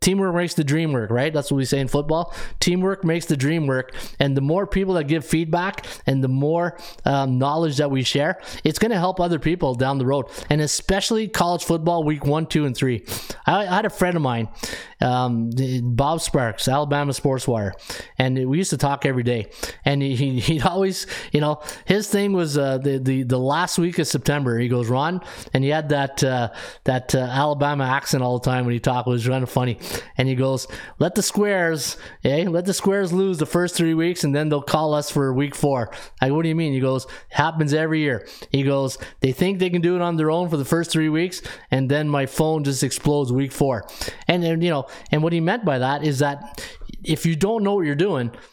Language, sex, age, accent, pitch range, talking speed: English, male, 20-39, American, 130-165 Hz, 230 wpm